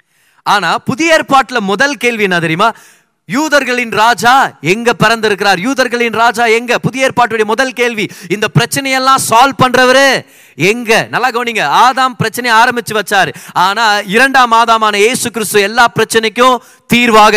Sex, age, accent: male, 20-39, native